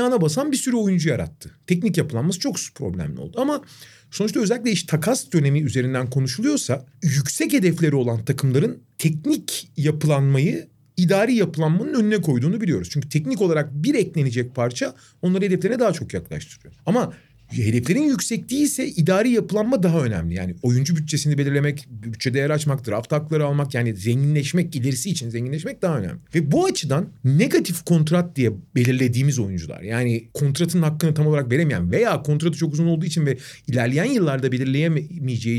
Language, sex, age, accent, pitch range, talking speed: Turkish, male, 40-59, native, 130-185 Hz, 150 wpm